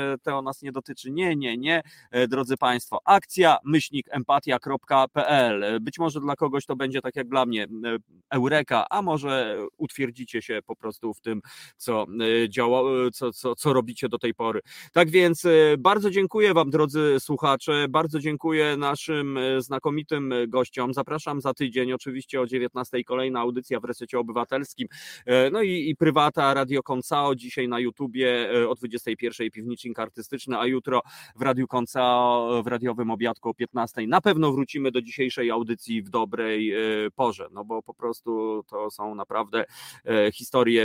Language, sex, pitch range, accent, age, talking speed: Polish, male, 120-140 Hz, native, 30-49, 150 wpm